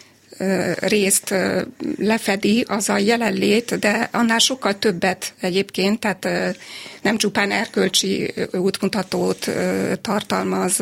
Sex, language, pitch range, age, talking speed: female, Hungarian, 195-225 Hz, 30-49, 90 wpm